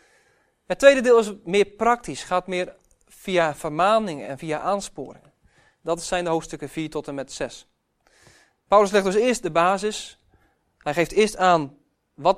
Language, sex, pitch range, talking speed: Dutch, male, 150-200 Hz, 160 wpm